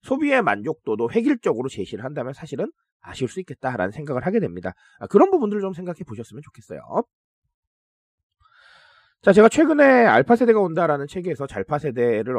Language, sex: Korean, male